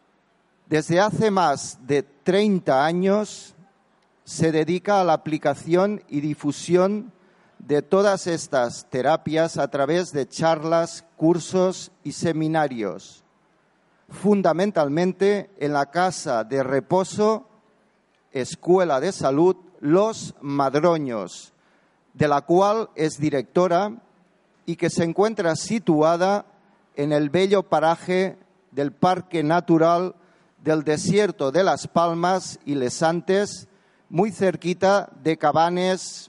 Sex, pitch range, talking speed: male, 155-190 Hz, 105 wpm